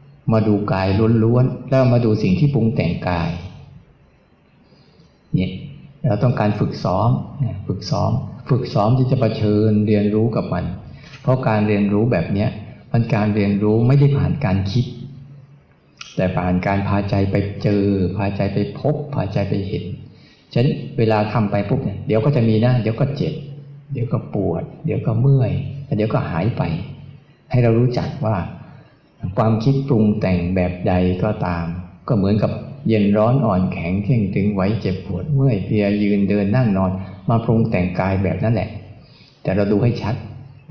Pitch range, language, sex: 100-130 Hz, Thai, male